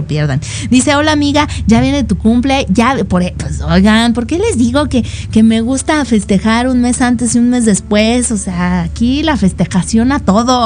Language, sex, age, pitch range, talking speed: Spanish, female, 30-49, 185-240 Hz, 195 wpm